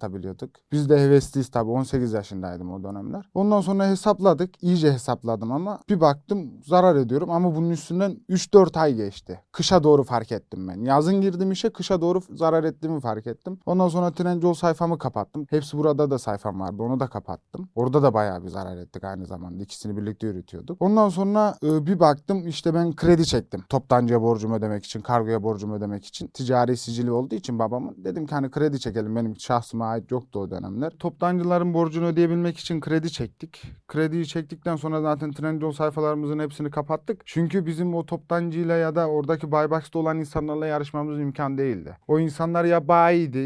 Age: 30-49